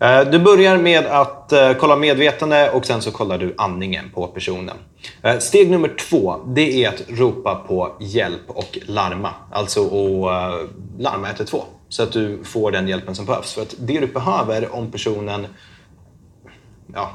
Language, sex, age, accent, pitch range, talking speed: Swedish, male, 30-49, native, 95-130 Hz, 160 wpm